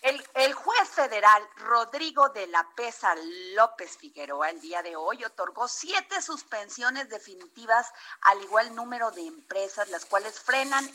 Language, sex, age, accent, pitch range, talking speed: Spanish, female, 40-59, Mexican, 200-280 Hz, 145 wpm